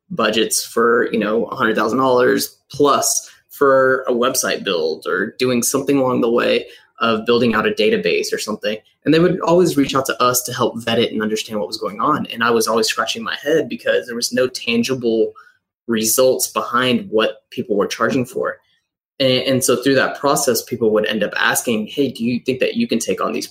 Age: 20-39